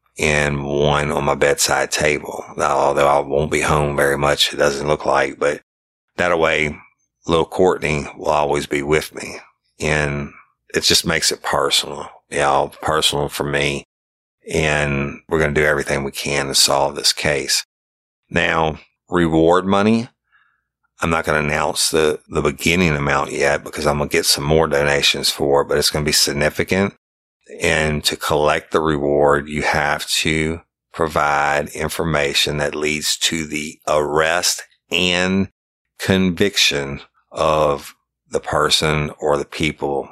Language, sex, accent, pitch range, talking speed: English, male, American, 70-80 Hz, 150 wpm